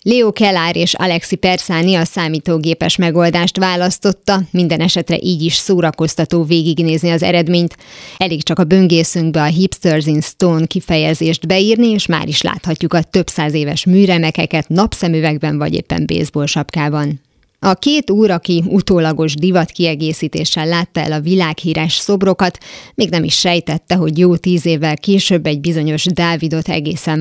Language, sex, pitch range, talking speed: Hungarian, female, 160-185 Hz, 145 wpm